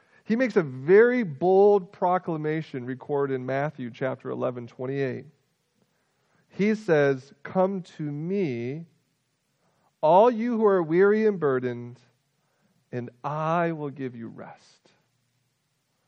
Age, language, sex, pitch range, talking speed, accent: 40-59, English, male, 140-190 Hz, 110 wpm, American